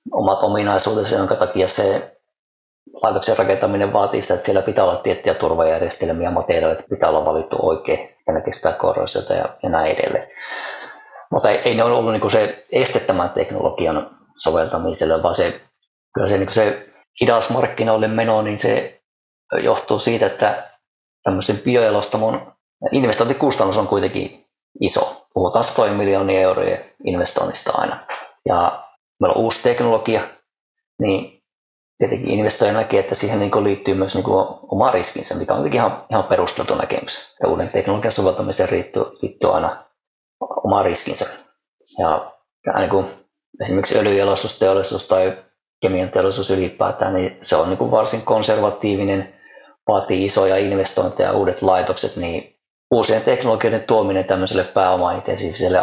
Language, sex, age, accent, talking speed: Finnish, male, 30-49, native, 120 wpm